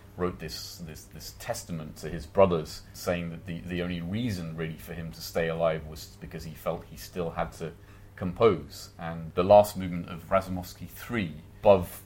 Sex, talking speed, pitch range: male, 185 wpm, 85-105 Hz